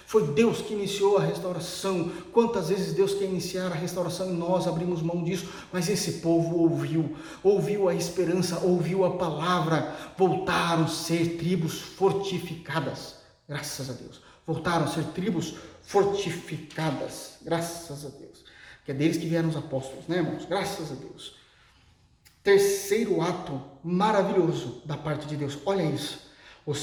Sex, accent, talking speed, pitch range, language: male, Brazilian, 150 wpm, 160-210 Hz, Portuguese